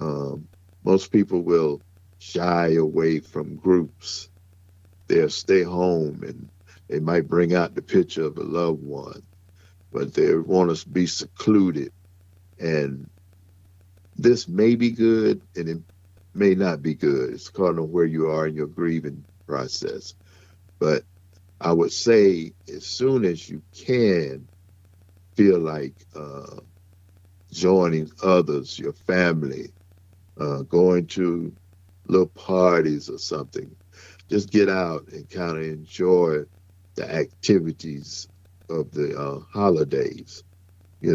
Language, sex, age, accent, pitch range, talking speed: English, male, 50-69, American, 80-90 Hz, 125 wpm